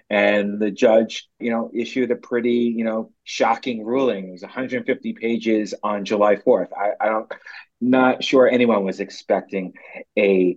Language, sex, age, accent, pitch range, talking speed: English, male, 30-49, American, 100-120 Hz, 165 wpm